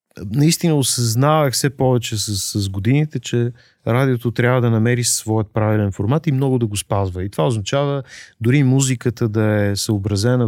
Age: 30-49